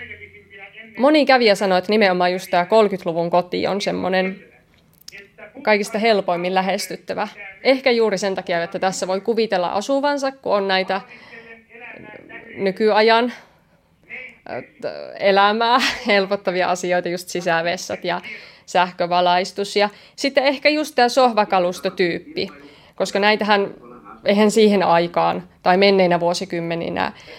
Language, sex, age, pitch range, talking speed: Finnish, female, 20-39, 175-220 Hz, 105 wpm